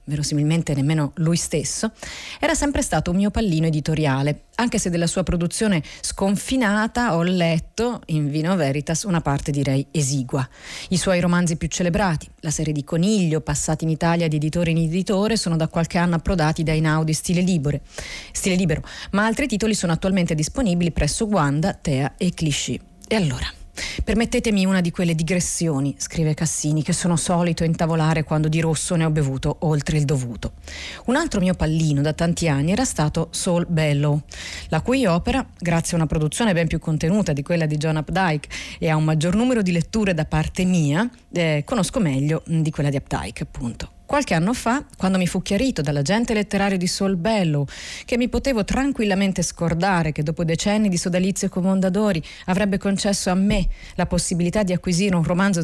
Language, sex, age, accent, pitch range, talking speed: Italian, female, 30-49, native, 155-195 Hz, 175 wpm